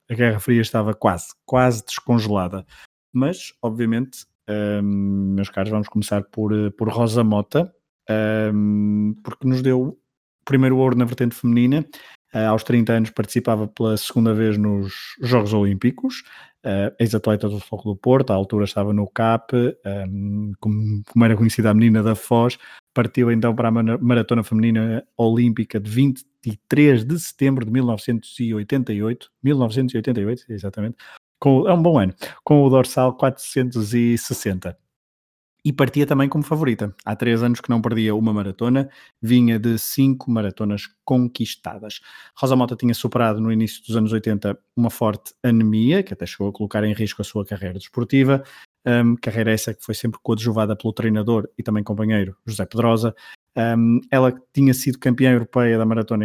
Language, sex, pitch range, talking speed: Portuguese, male, 105-125 Hz, 145 wpm